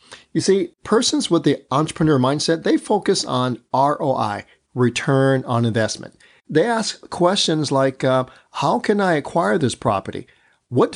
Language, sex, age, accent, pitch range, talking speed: English, male, 40-59, American, 125-165 Hz, 140 wpm